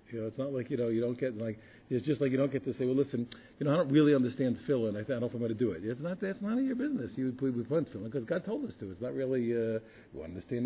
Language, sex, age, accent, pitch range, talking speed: English, male, 50-69, American, 115-150 Hz, 345 wpm